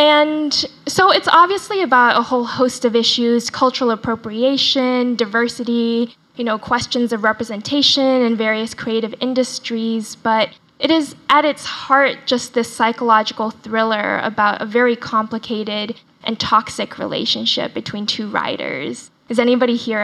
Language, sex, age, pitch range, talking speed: English, female, 10-29, 225-255 Hz, 135 wpm